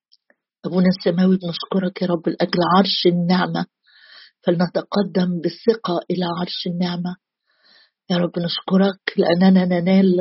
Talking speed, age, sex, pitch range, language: 105 wpm, 50-69, female, 180-205 Hz, Arabic